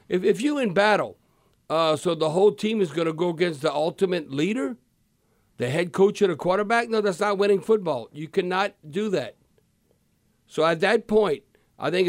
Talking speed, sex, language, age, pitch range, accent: 195 wpm, male, English, 50-69, 155-195 Hz, American